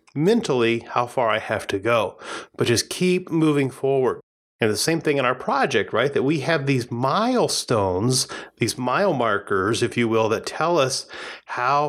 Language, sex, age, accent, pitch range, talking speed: English, male, 30-49, American, 120-160 Hz, 175 wpm